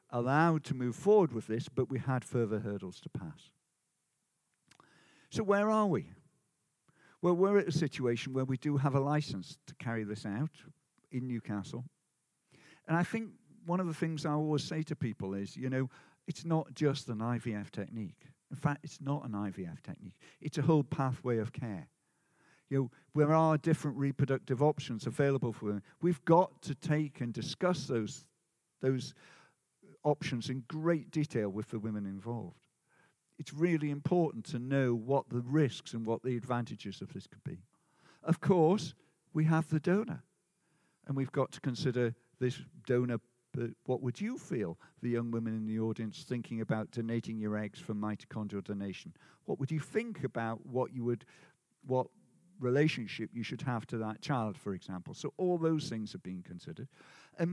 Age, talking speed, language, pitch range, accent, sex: 50-69, 170 wpm, English, 115-160 Hz, British, male